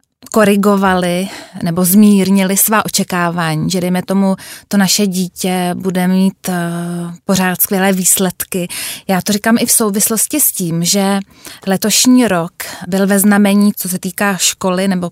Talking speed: 145 wpm